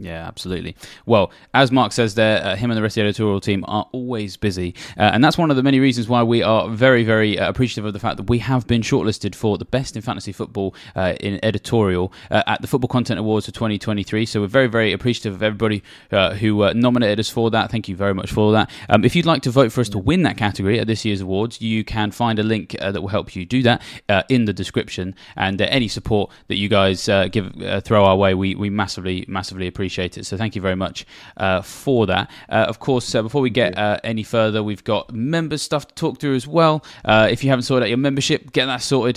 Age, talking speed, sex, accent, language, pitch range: 20-39, 255 wpm, male, British, English, 100-125 Hz